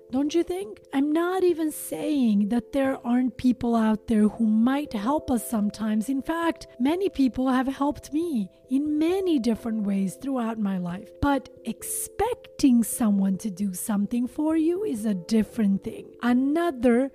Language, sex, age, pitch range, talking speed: English, female, 40-59, 215-280 Hz, 155 wpm